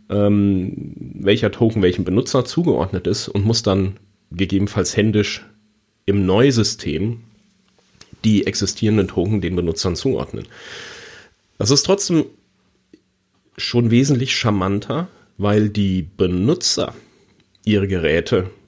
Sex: male